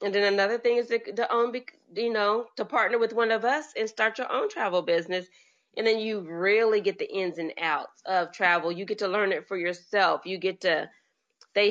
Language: English